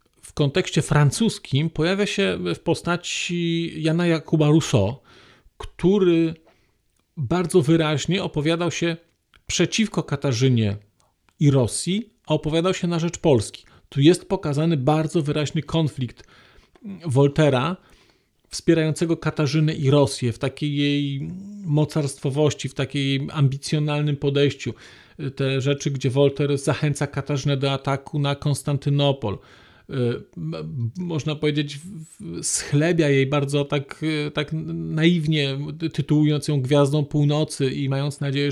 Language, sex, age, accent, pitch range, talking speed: Polish, male, 40-59, native, 140-165 Hz, 105 wpm